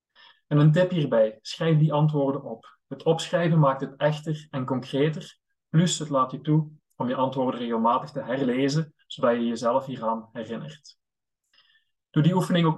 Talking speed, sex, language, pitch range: 165 wpm, male, English, 120-155 Hz